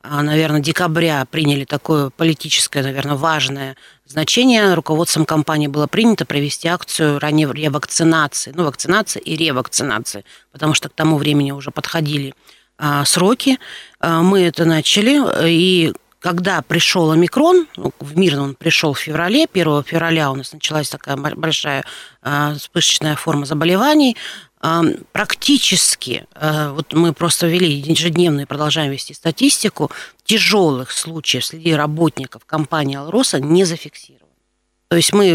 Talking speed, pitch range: 120 wpm, 145-170 Hz